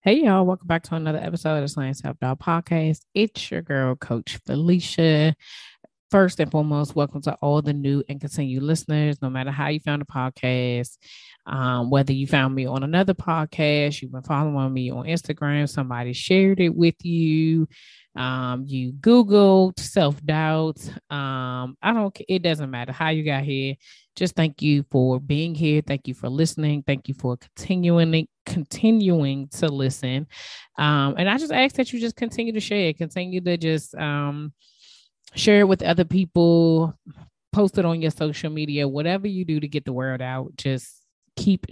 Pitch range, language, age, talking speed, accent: 140-170 Hz, English, 20-39, 175 wpm, American